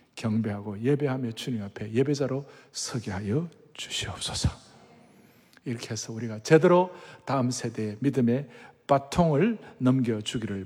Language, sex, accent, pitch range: Korean, male, native, 115-175 Hz